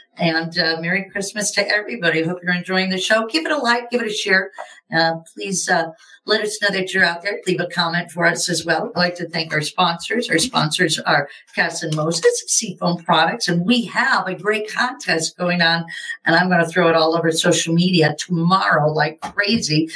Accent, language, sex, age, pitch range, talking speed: American, English, female, 50-69, 165-220 Hz, 215 wpm